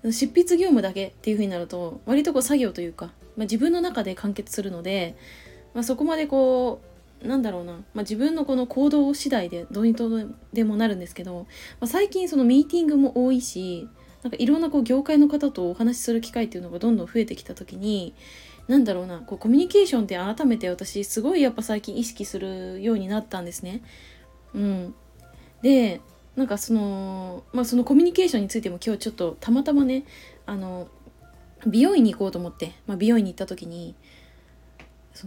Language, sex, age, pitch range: Japanese, female, 20-39, 190-255 Hz